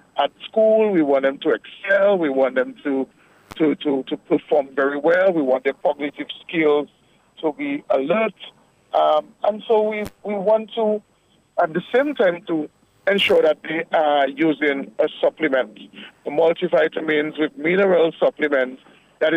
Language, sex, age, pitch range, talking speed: English, male, 50-69, 150-195 Hz, 155 wpm